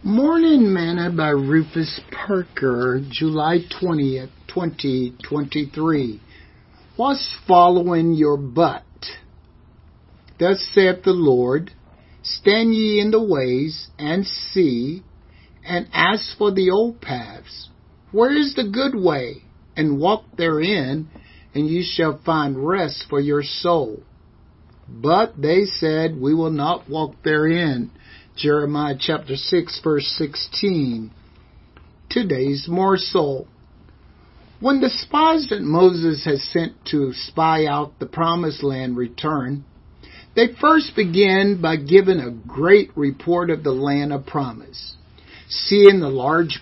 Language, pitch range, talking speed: English, 140-185 Hz, 115 wpm